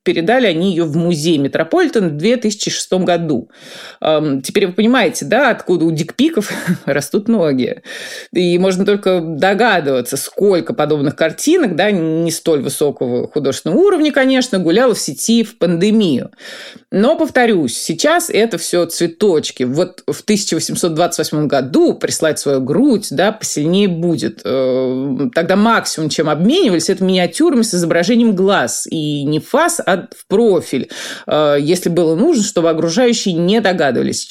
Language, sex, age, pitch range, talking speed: Russian, female, 30-49, 160-230 Hz, 130 wpm